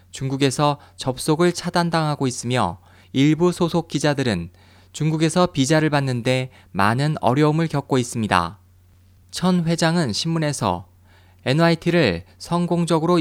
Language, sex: Korean, male